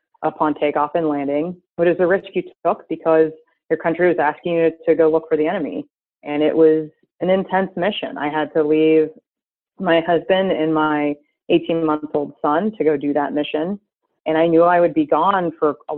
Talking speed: 195 wpm